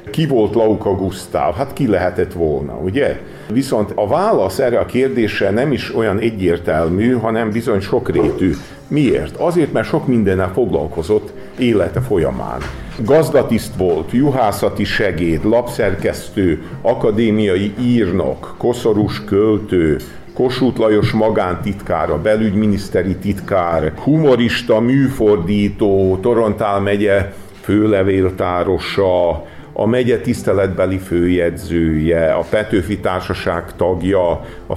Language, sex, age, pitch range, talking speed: Hungarian, male, 50-69, 90-115 Hz, 100 wpm